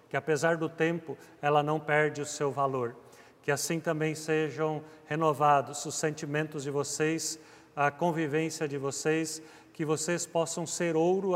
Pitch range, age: 145-160 Hz, 50-69